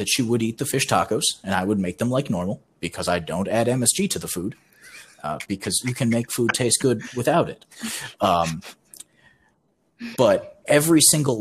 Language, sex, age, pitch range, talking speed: English, male, 30-49, 90-120 Hz, 190 wpm